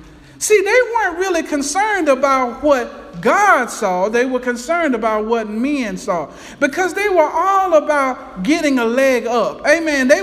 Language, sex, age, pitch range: English, male, 50-69, 245-335 Hz